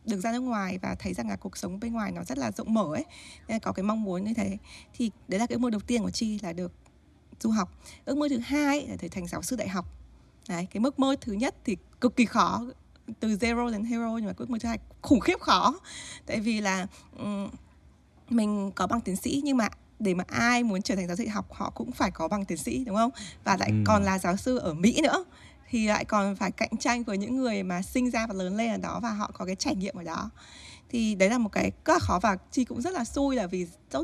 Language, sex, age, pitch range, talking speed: Vietnamese, female, 20-39, 195-245 Hz, 265 wpm